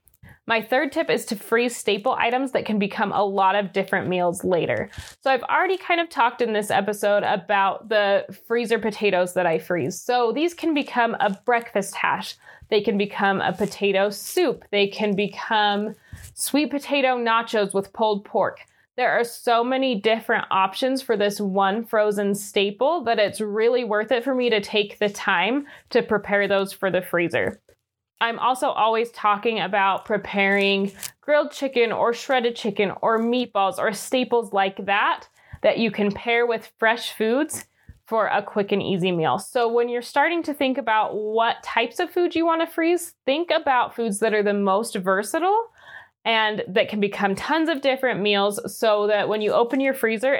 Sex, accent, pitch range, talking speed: female, American, 200-245 Hz, 180 wpm